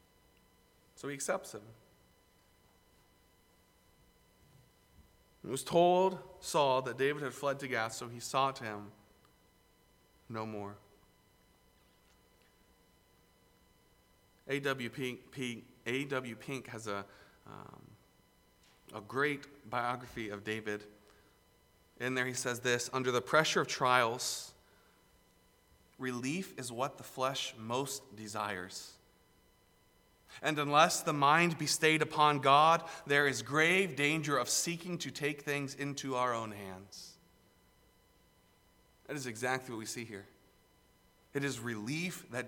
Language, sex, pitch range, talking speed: English, male, 105-140 Hz, 115 wpm